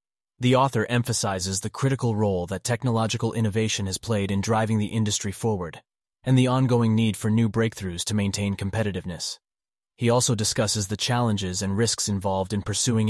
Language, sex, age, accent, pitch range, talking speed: English, male, 30-49, American, 100-115 Hz, 165 wpm